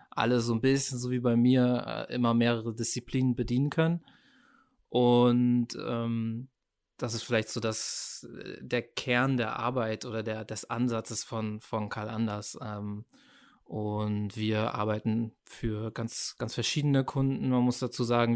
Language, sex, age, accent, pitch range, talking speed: German, male, 20-39, German, 115-130 Hz, 145 wpm